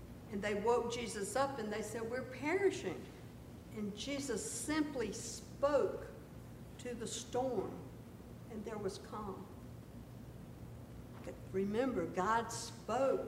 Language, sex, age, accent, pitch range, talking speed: English, female, 60-79, American, 200-255 Hz, 110 wpm